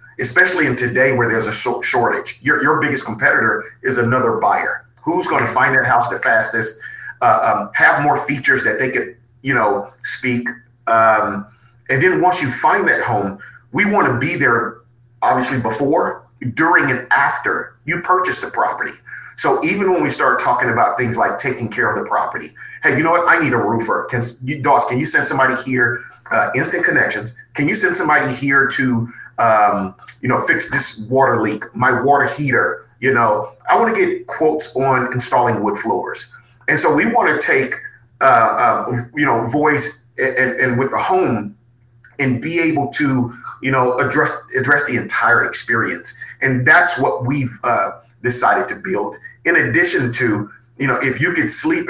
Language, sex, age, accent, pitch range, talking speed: English, male, 40-59, American, 120-145 Hz, 185 wpm